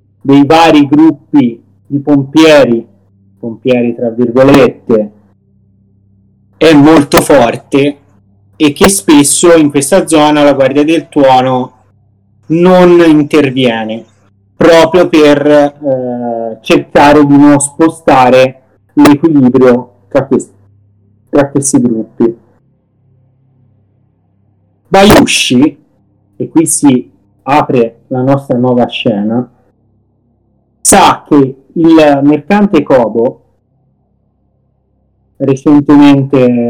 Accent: native